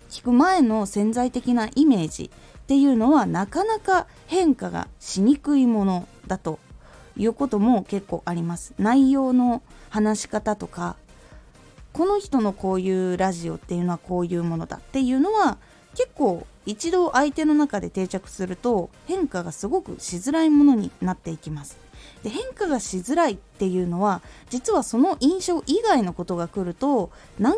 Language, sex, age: Japanese, female, 20-39